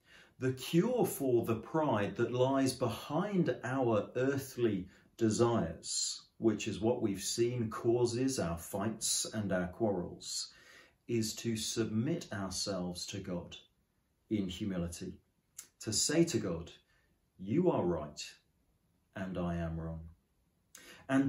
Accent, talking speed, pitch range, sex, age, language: British, 120 wpm, 90-120 Hz, male, 40-59, English